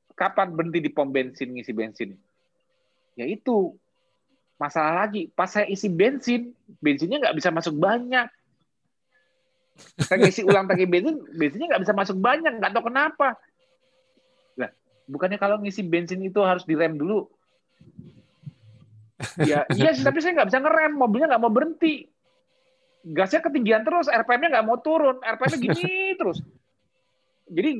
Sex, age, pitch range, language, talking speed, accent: male, 30-49, 160-265 Hz, Indonesian, 140 wpm, native